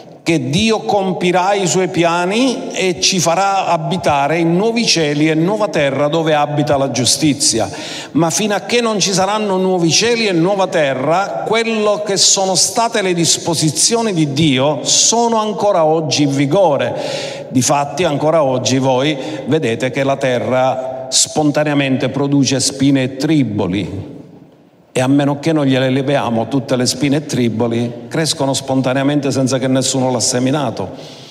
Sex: male